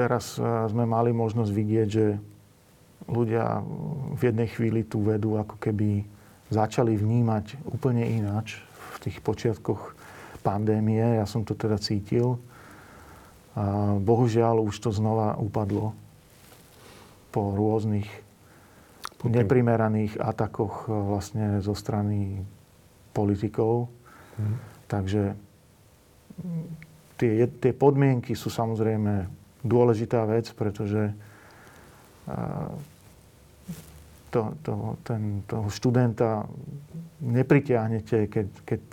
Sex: male